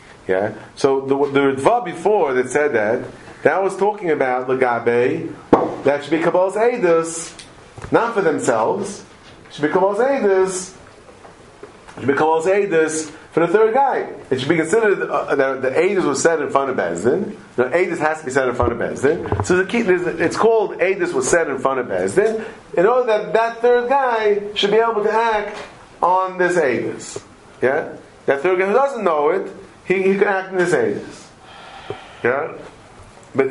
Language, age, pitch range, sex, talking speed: English, 40-59, 150-220 Hz, male, 180 wpm